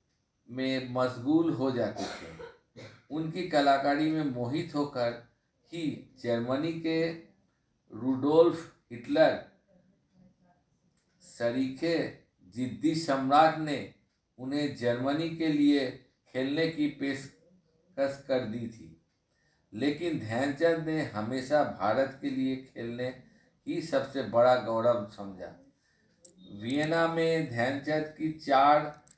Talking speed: 95 wpm